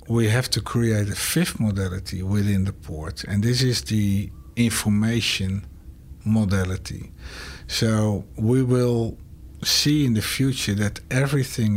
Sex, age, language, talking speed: male, 60-79, English, 125 wpm